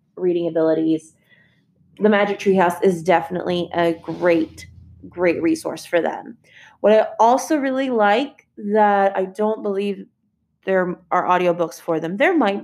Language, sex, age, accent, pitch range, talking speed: English, female, 20-39, American, 185-235 Hz, 145 wpm